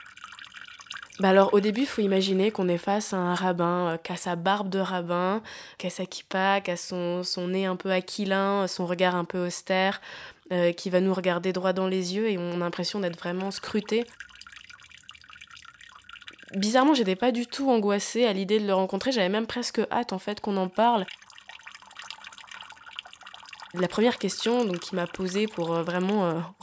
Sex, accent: female, French